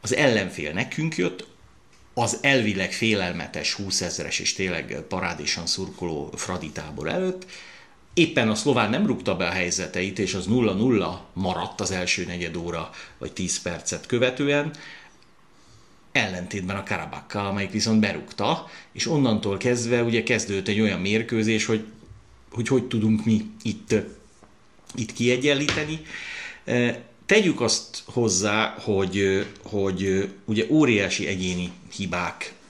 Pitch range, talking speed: 95-120 Hz, 120 wpm